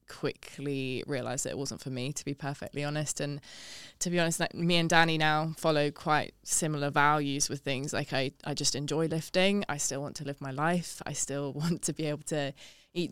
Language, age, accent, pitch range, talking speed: English, 20-39, British, 145-170 Hz, 215 wpm